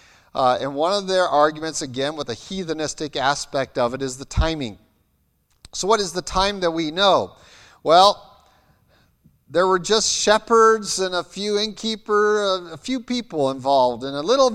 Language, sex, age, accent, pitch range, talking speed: English, male, 40-59, American, 135-190 Hz, 170 wpm